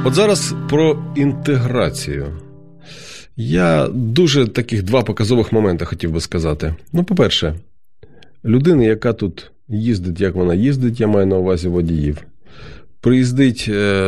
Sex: male